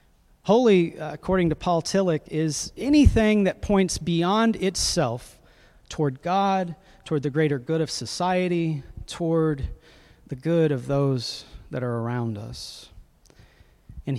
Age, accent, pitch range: 40-59, American, 120-155 Hz